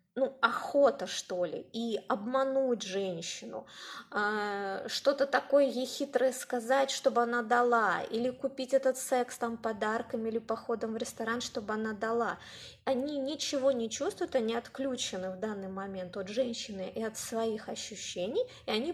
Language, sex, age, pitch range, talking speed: Russian, female, 20-39, 215-270 Hz, 145 wpm